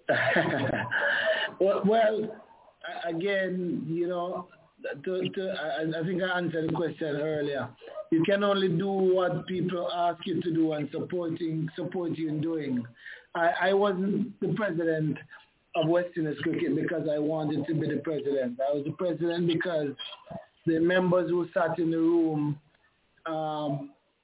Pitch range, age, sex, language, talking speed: 150-180 Hz, 60-79, male, English, 145 wpm